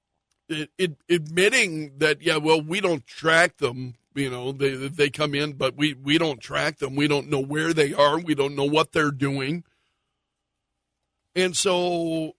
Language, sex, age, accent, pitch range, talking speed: English, male, 50-69, American, 145-185 Hz, 165 wpm